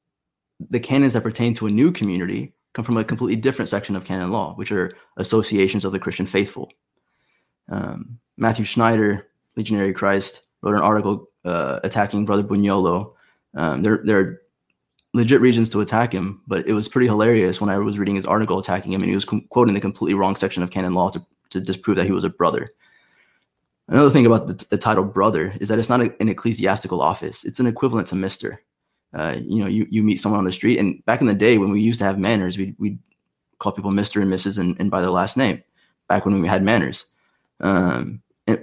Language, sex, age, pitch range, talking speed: English, male, 20-39, 95-110 Hz, 215 wpm